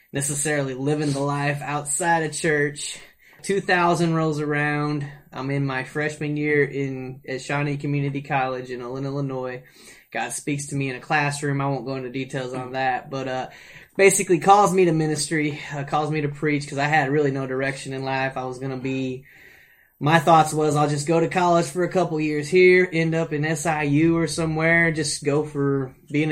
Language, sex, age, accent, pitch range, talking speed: English, male, 20-39, American, 135-160 Hz, 190 wpm